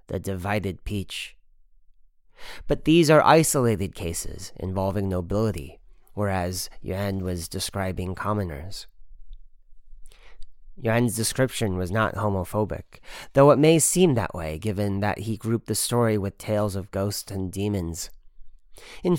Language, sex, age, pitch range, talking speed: English, male, 30-49, 95-115 Hz, 120 wpm